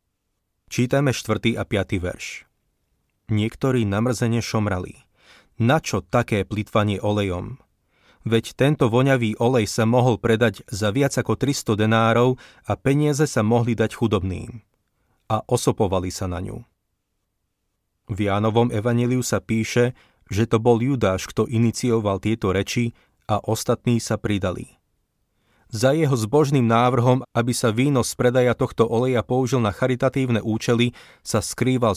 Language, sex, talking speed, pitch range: Slovak, male, 130 wpm, 105-125 Hz